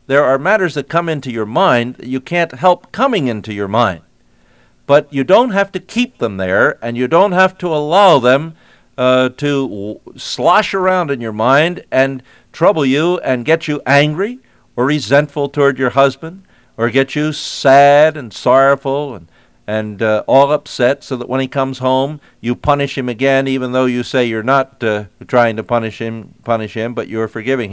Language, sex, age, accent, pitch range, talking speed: English, male, 50-69, American, 120-160 Hz, 195 wpm